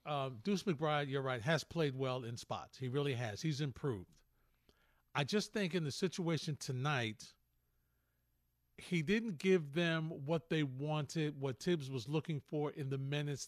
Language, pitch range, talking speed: English, 135-165 Hz, 165 wpm